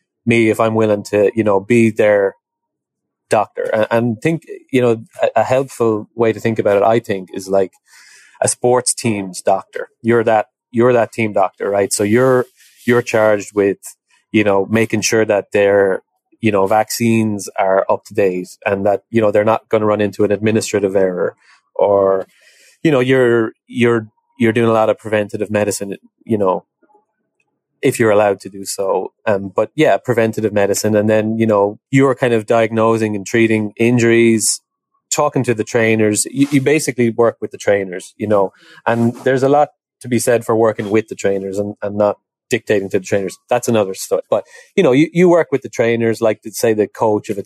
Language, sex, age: English, male, 20-39